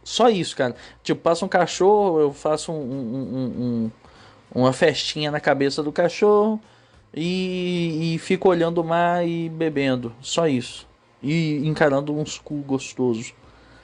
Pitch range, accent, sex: 135-190 Hz, Brazilian, male